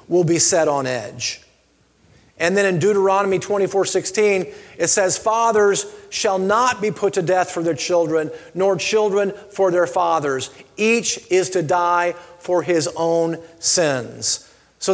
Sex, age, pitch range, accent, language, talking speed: male, 40-59, 165-210 Hz, American, English, 150 wpm